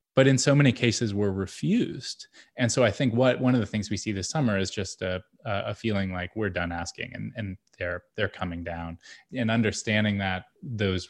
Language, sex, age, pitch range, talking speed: English, male, 20-39, 95-115 Hz, 210 wpm